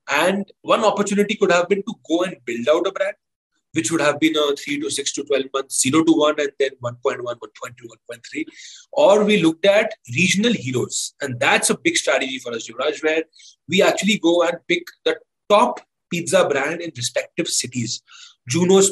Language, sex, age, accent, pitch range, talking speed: English, male, 30-49, Indian, 155-220 Hz, 190 wpm